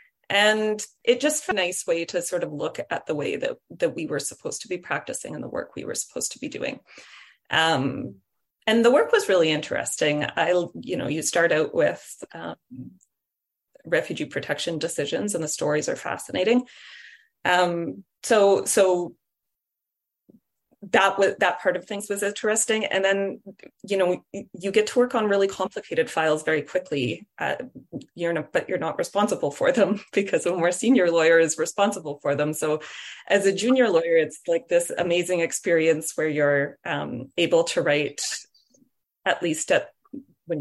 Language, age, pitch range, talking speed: English, 30-49, 160-215 Hz, 170 wpm